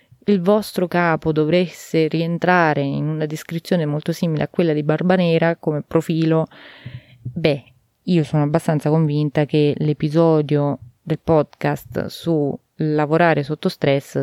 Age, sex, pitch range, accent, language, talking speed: 20-39, female, 145-185 Hz, native, Italian, 120 wpm